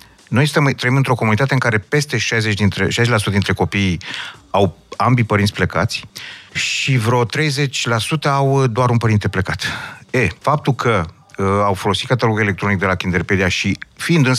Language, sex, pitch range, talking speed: Romanian, male, 100-130 Hz, 150 wpm